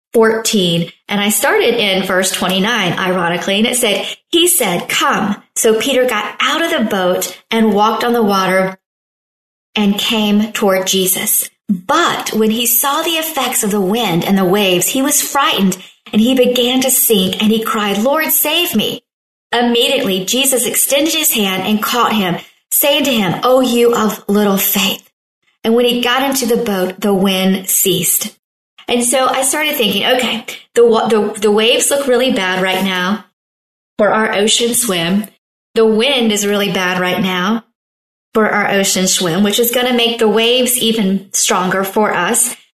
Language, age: English, 40-59